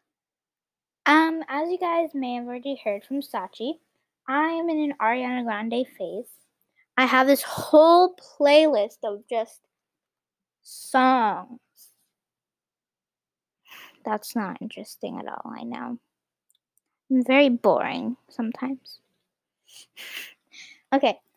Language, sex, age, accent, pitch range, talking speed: English, female, 10-29, American, 235-285 Hz, 105 wpm